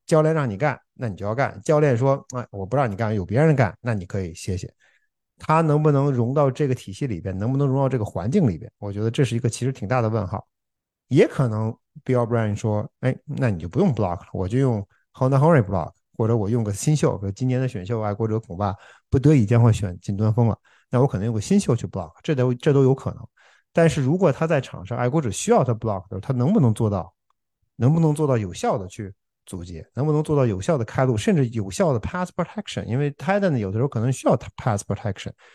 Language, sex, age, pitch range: Chinese, male, 50-69, 105-140 Hz